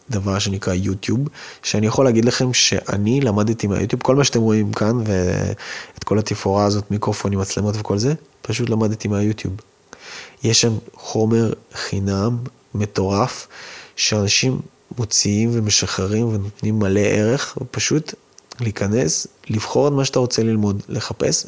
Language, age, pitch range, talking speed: Hebrew, 20-39, 100-115 Hz, 130 wpm